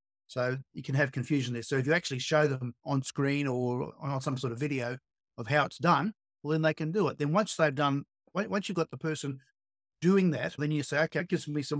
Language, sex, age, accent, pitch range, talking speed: English, male, 50-69, Australian, 130-155 Hz, 250 wpm